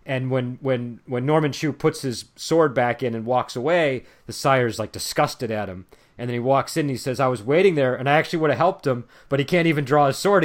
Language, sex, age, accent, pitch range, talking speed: English, male, 40-59, American, 105-135 Hz, 265 wpm